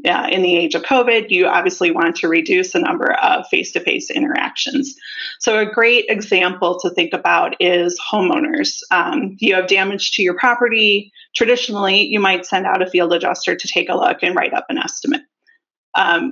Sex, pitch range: female, 185-260 Hz